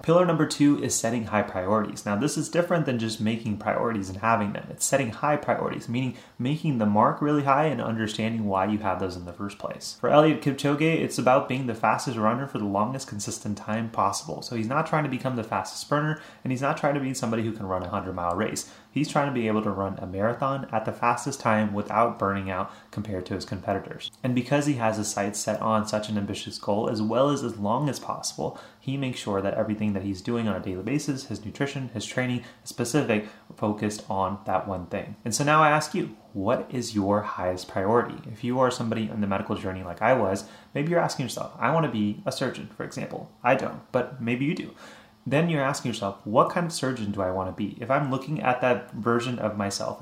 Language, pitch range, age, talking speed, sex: English, 105-130 Hz, 30-49, 240 wpm, male